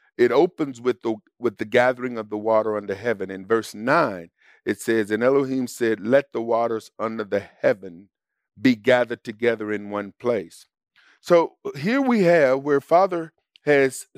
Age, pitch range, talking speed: 50-69, 120-175 Hz, 165 wpm